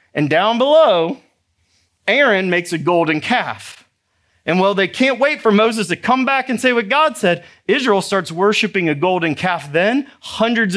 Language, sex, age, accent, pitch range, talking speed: English, male, 30-49, American, 165-235 Hz, 175 wpm